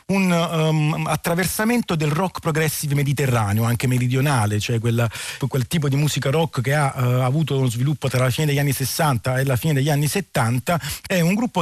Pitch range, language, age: 125-155 Hz, Italian, 40-59